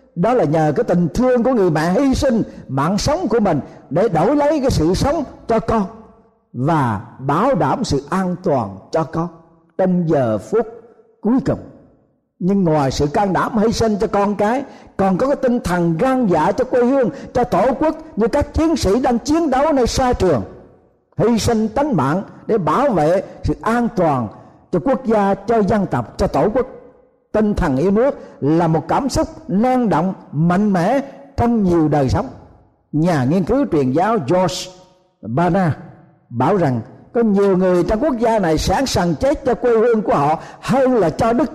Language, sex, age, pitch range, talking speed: Vietnamese, male, 50-69, 165-250 Hz, 190 wpm